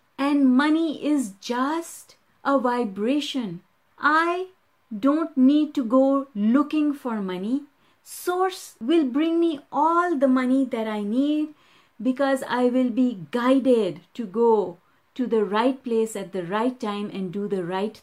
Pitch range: 230-290 Hz